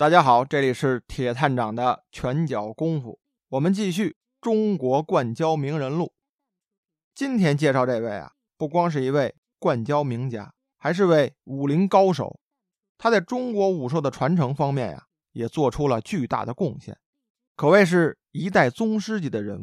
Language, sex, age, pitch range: Chinese, male, 20-39, 130-190 Hz